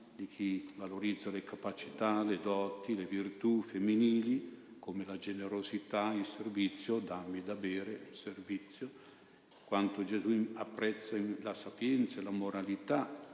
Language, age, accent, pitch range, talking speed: Italian, 60-79, native, 100-110 Hz, 125 wpm